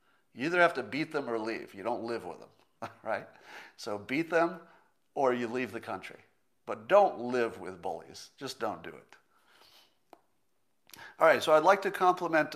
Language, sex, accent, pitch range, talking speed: English, male, American, 120-175 Hz, 180 wpm